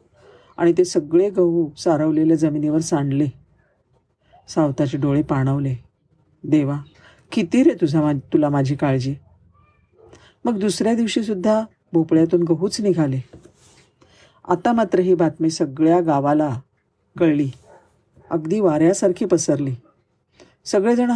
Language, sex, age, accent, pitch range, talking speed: Marathi, female, 50-69, native, 145-190 Hz, 100 wpm